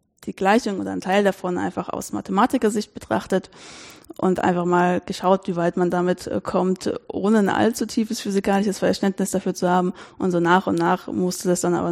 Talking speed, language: 190 wpm, German